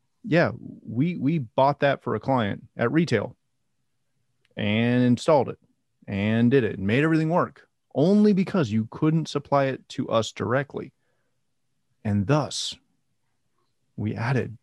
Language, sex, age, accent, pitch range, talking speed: English, male, 30-49, American, 105-140 Hz, 135 wpm